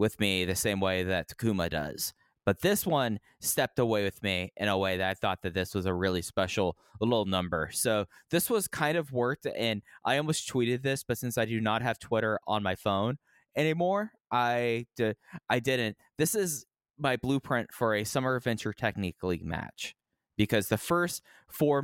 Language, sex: English, male